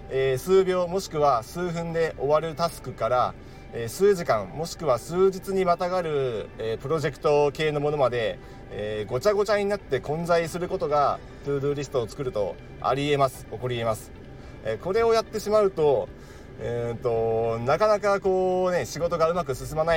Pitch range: 120-175 Hz